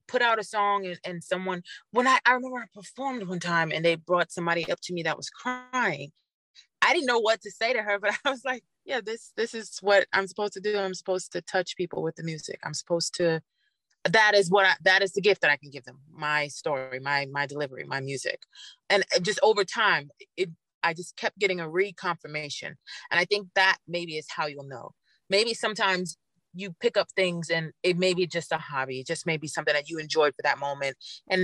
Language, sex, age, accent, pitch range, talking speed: English, female, 30-49, American, 160-200 Hz, 230 wpm